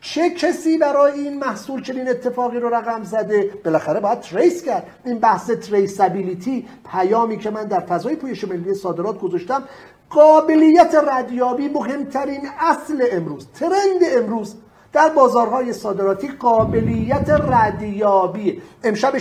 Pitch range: 200-265 Hz